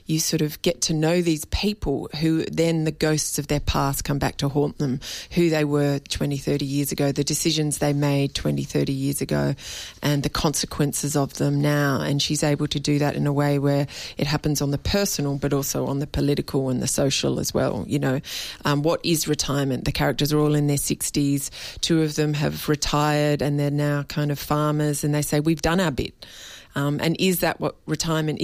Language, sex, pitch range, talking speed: English, female, 145-155 Hz, 215 wpm